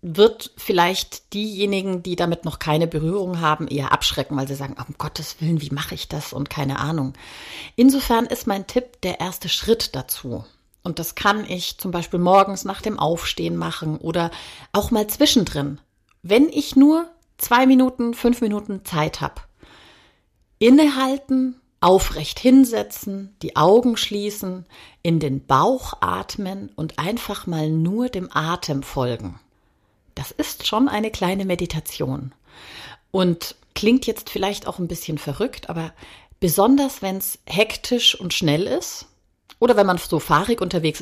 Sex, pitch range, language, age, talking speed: female, 155-225 Hz, German, 40-59, 150 wpm